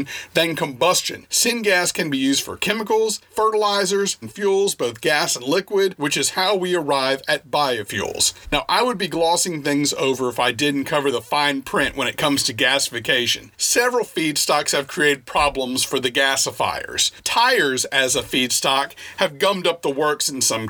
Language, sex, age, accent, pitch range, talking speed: English, male, 40-59, American, 140-200 Hz, 175 wpm